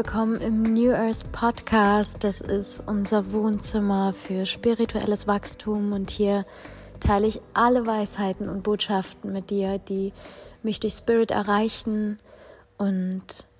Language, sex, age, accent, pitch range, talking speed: German, female, 20-39, German, 205-230 Hz, 125 wpm